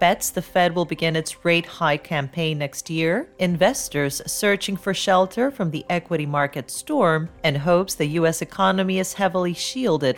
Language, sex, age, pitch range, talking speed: English, female, 40-59, 145-195 Hz, 160 wpm